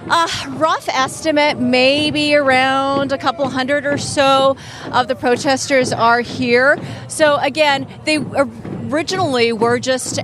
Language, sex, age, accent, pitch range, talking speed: English, female, 30-49, American, 215-260 Hz, 130 wpm